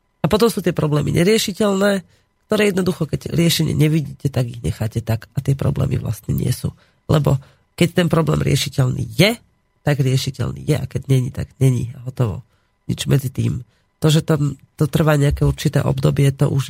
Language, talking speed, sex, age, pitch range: Slovak, 180 wpm, female, 40-59, 130-155 Hz